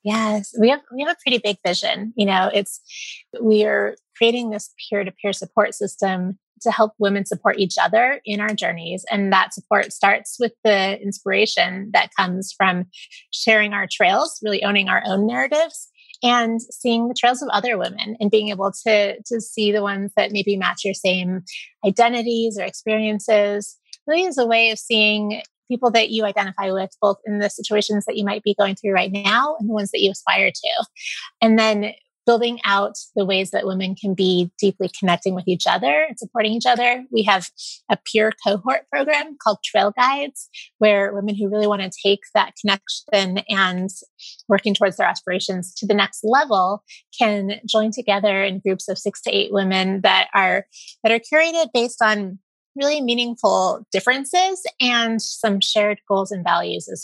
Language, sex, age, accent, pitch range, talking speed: English, female, 30-49, American, 195-230 Hz, 180 wpm